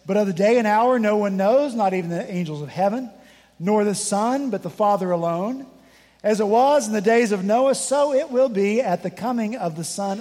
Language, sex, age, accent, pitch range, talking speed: English, male, 50-69, American, 180-245 Hz, 235 wpm